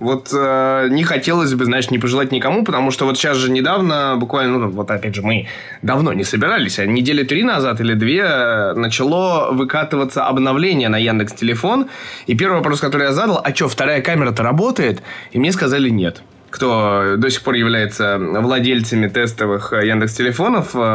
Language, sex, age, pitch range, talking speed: Russian, male, 20-39, 120-165 Hz, 170 wpm